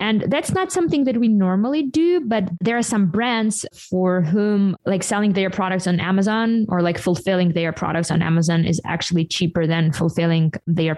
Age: 20-39